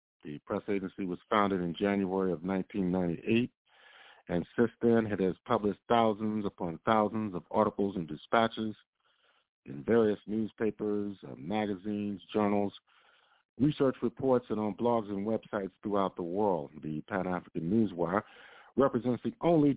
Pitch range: 90-110 Hz